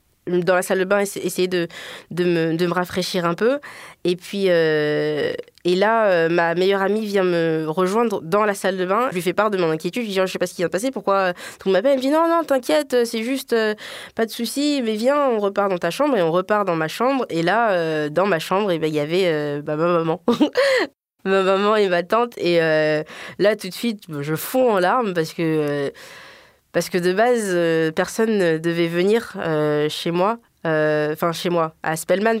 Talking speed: 235 wpm